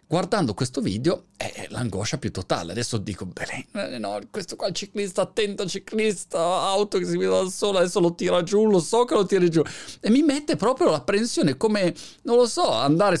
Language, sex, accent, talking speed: Italian, male, native, 200 wpm